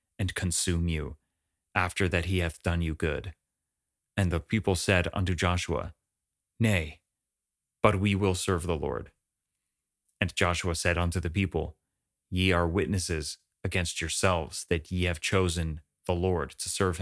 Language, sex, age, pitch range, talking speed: English, male, 30-49, 85-95 Hz, 150 wpm